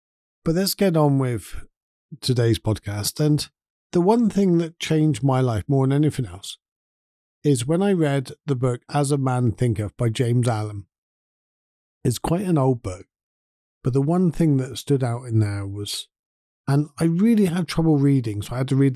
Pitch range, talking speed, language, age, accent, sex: 110-140 Hz, 185 wpm, English, 50-69, British, male